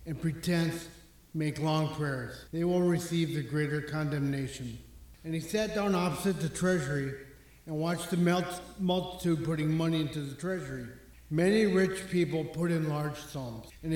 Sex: male